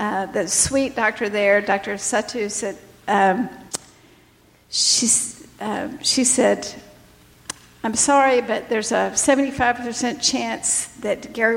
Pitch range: 220-270 Hz